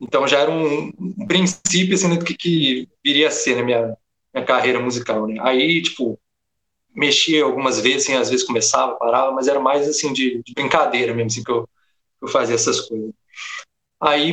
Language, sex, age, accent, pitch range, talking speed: Portuguese, male, 20-39, Brazilian, 120-145 Hz, 195 wpm